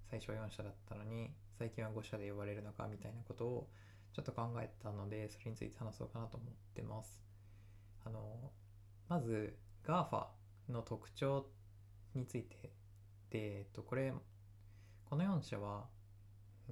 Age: 20-39